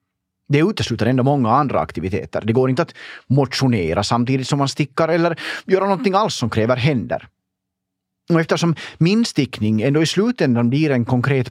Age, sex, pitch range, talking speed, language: 30-49, male, 105-160 Hz, 165 wpm, Swedish